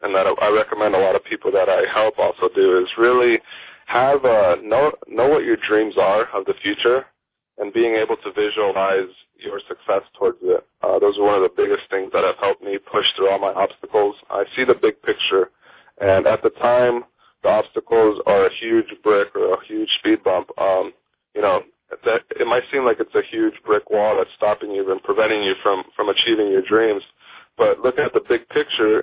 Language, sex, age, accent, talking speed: English, male, 20-39, American, 210 wpm